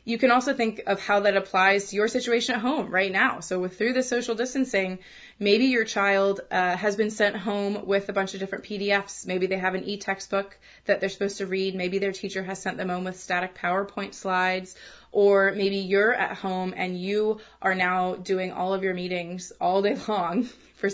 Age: 20-39